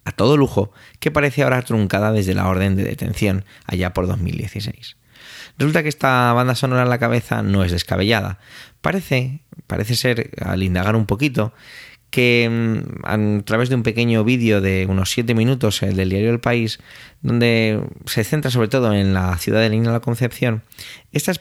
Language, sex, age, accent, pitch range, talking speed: Spanish, male, 20-39, Spanish, 100-125 Hz, 175 wpm